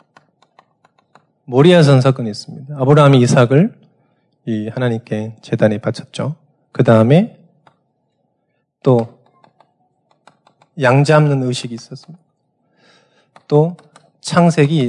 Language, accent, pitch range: Korean, native, 125-175 Hz